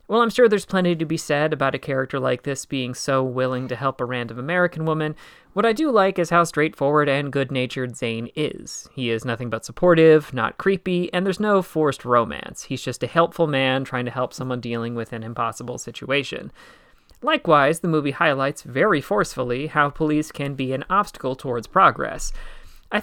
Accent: American